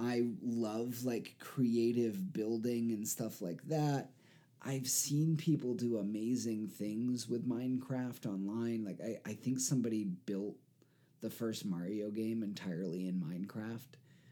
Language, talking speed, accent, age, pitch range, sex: English, 130 wpm, American, 30-49, 110-140 Hz, male